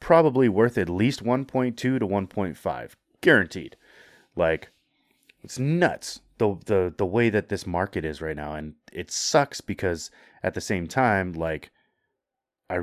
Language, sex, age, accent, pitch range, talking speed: English, male, 30-49, American, 80-105 Hz, 145 wpm